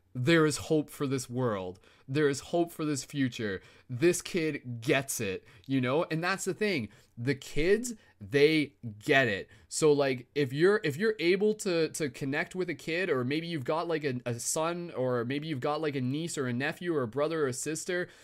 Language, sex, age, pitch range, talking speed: English, male, 20-39, 125-170 Hz, 210 wpm